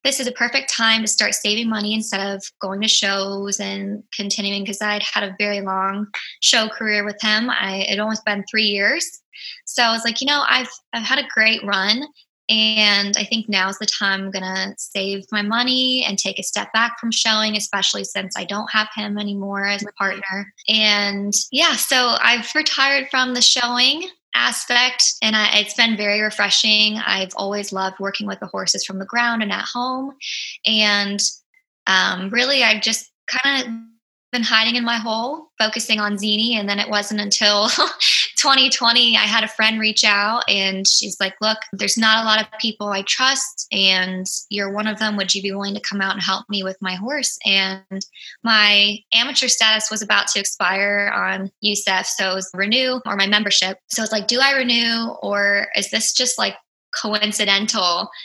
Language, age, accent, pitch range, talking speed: English, 20-39, American, 200-230 Hz, 190 wpm